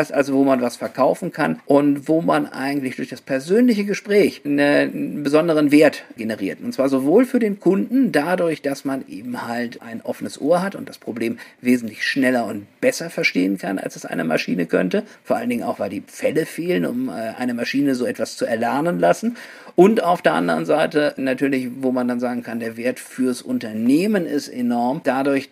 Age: 50-69